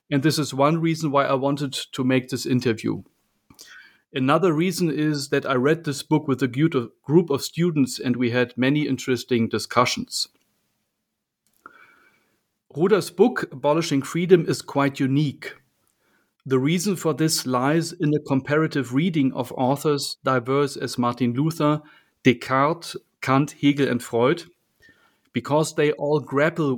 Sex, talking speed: male, 140 wpm